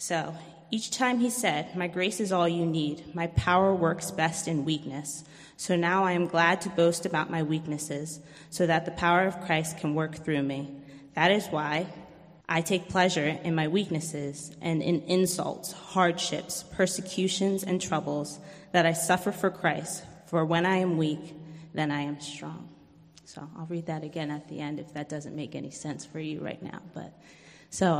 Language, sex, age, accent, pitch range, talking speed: English, female, 20-39, American, 155-175 Hz, 185 wpm